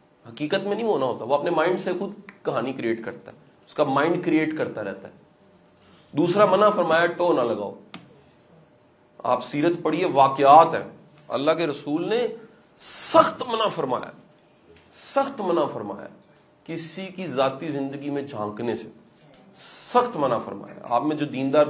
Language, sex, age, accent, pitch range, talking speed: English, male, 40-59, Indian, 150-205 Hz, 150 wpm